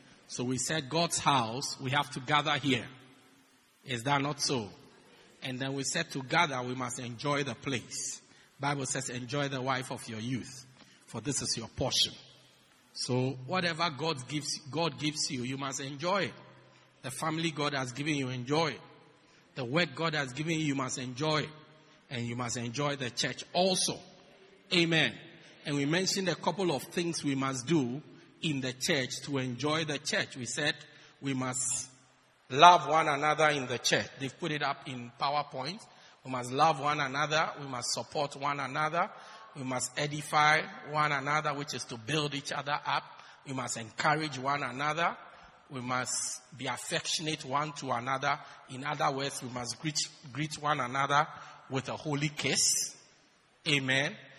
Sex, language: male, English